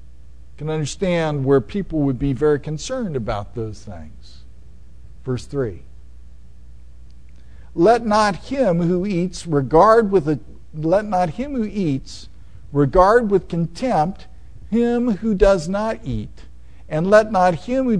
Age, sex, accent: 50-69, male, American